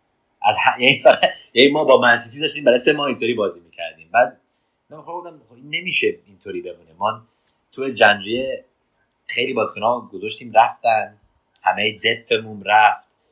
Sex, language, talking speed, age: male, Persian, 145 wpm, 30-49